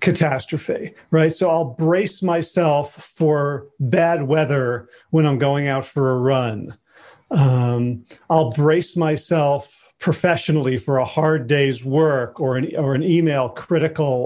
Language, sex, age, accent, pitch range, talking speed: English, male, 40-59, American, 135-165 Hz, 135 wpm